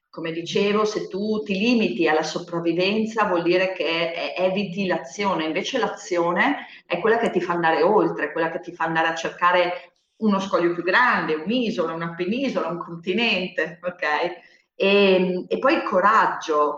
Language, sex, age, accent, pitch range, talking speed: Italian, female, 40-59, native, 165-205 Hz, 155 wpm